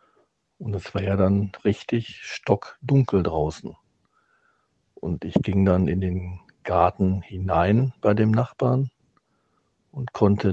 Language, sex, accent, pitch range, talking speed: German, male, German, 100-125 Hz, 120 wpm